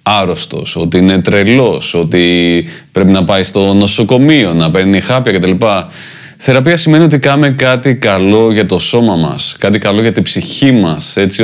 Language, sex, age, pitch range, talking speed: Greek, male, 30-49, 105-135 Hz, 165 wpm